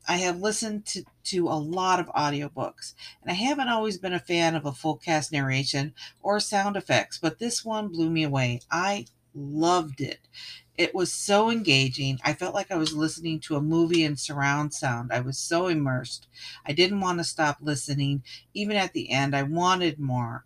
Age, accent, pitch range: 50-69, American, 140-170 Hz